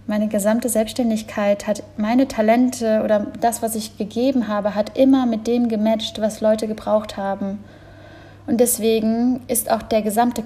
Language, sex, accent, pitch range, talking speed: German, female, German, 210-240 Hz, 155 wpm